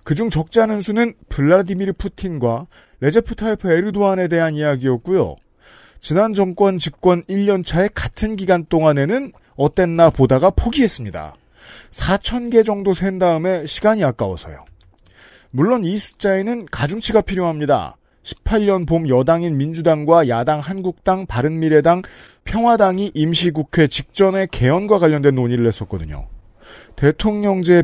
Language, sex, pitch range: Korean, male, 130-195 Hz